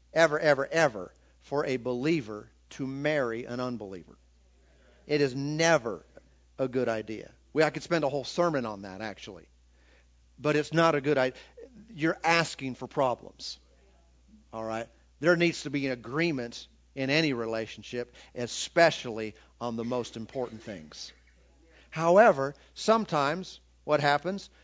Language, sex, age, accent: English, male, 50-69, American